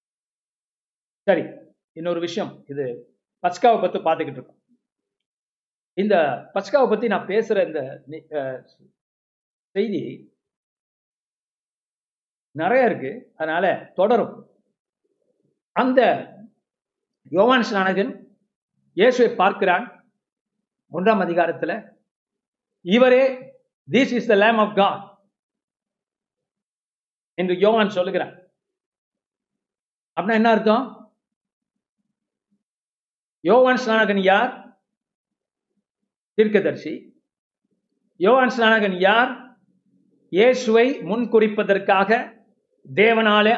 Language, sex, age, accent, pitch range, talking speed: Tamil, male, 50-69, native, 195-230 Hz, 65 wpm